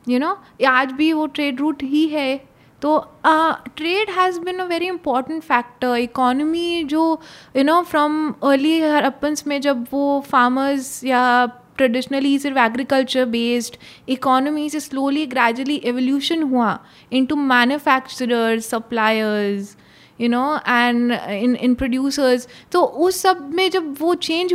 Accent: native